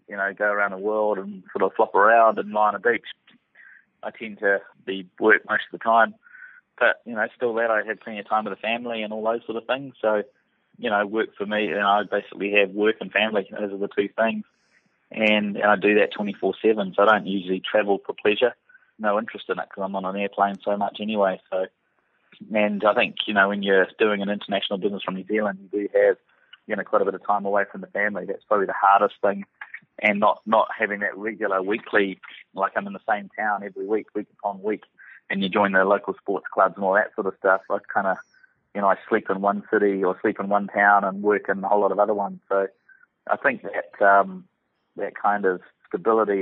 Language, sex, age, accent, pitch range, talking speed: English, male, 30-49, Australian, 95-105 Hz, 245 wpm